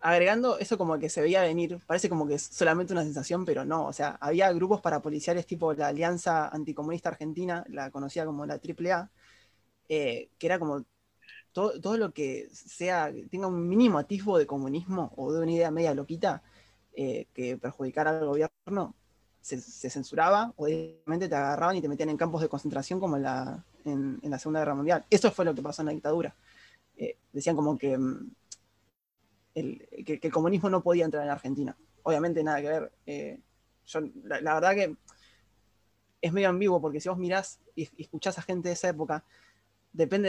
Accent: Argentinian